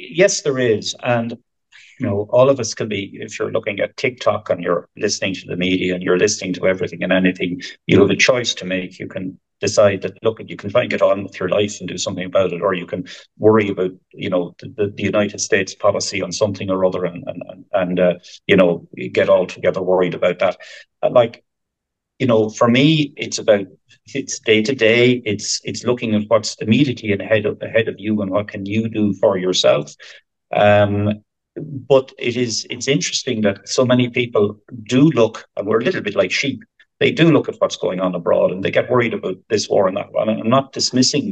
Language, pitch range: English, 100-125 Hz